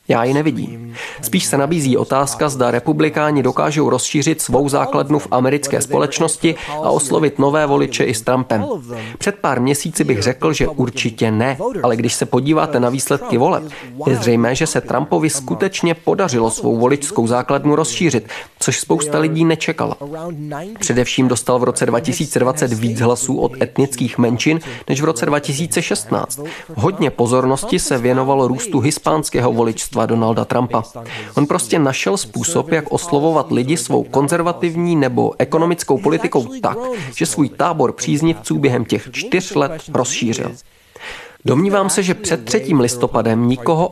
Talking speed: 145 wpm